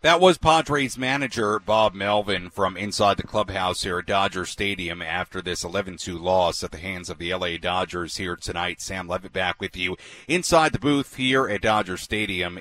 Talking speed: 185 wpm